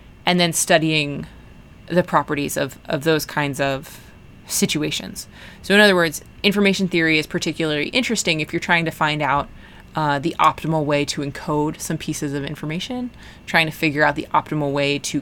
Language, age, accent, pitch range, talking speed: English, 20-39, American, 150-180 Hz, 175 wpm